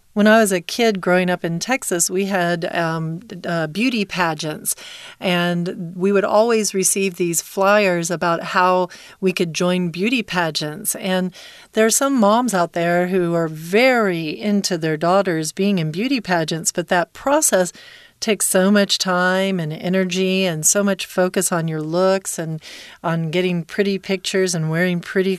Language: Chinese